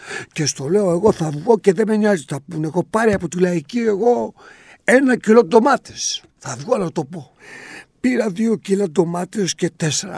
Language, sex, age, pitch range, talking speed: Greek, male, 60-79, 140-205 Hz, 190 wpm